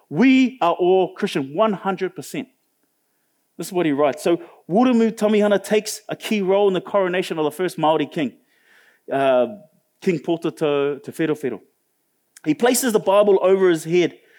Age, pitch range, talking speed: 30-49, 150-210 Hz, 145 wpm